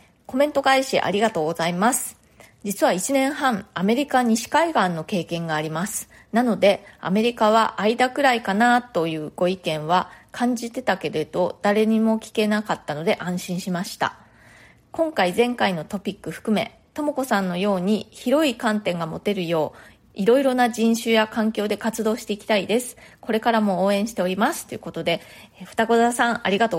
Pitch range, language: 185-240 Hz, Japanese